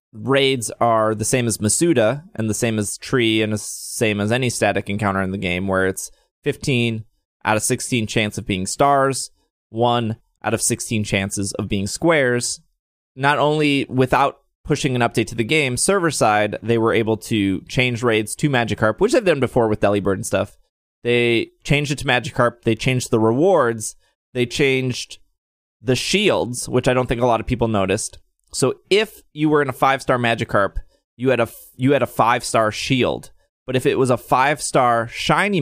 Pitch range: 105-130 Hz